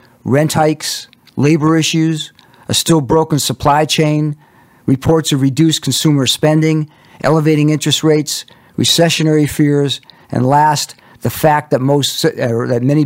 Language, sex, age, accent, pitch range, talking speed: English, male, 50-69, American, 130-150 Hz, 130 wpm